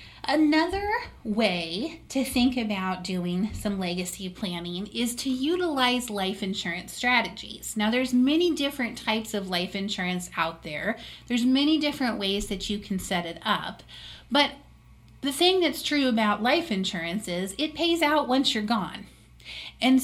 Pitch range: 195-260 Hz